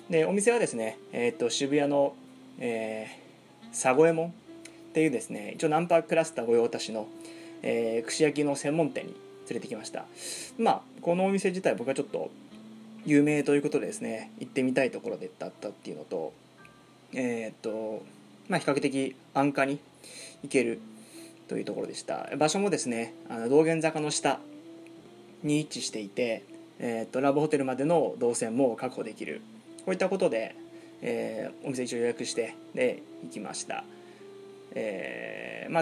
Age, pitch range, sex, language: 20-39, 125-195 Hz, male, Japanese